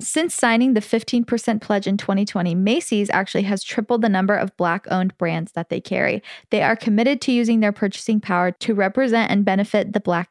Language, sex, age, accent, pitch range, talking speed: English, female, 10-29, American, 195-240 Hz, 190 wpm